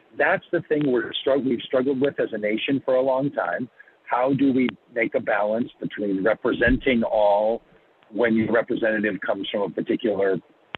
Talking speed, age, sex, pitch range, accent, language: 165 wpm, 50-69, male, 115-170 Hz, American, English